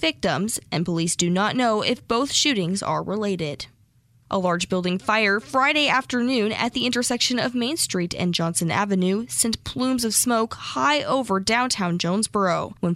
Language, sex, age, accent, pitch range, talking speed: English, female, 10-29, American, 180-255 Hz, 160 wpm